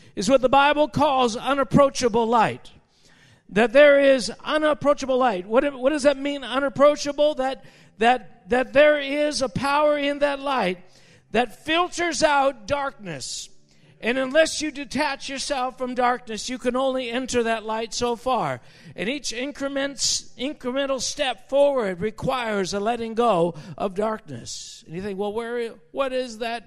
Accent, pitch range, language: American, 185-275 Hz, English